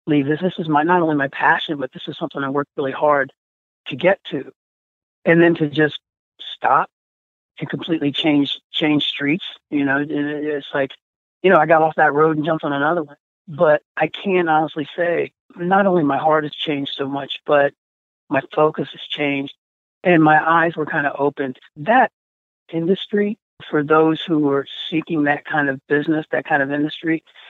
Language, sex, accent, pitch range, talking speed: English, male, American, 140-165 Hz, 190 wpm